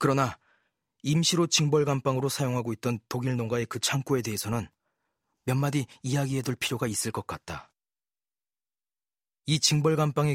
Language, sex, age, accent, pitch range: Korean, male, 40-59, native, 110-140 Hz